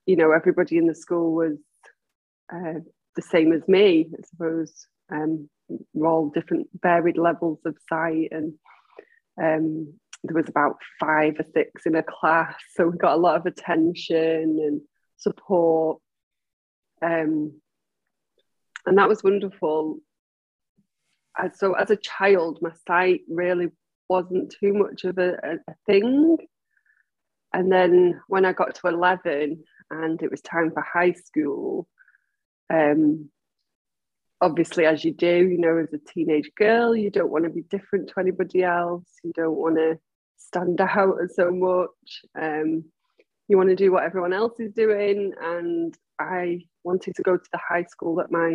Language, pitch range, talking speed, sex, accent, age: English, 160-185 Hz, 155 wpm, female, British, 20-39